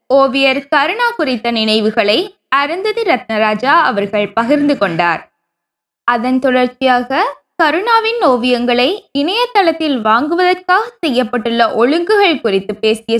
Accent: native